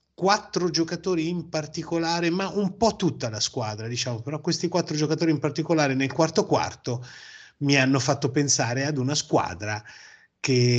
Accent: native